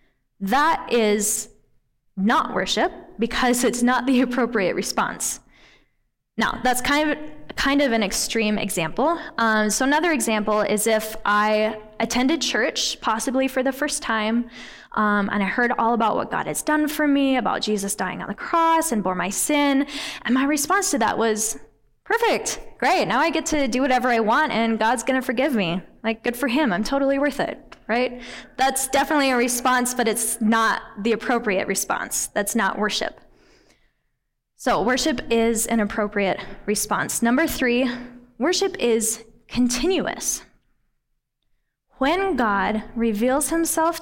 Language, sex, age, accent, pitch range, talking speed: English, female, 10-29, American, 215-280 Hz, 155 wpm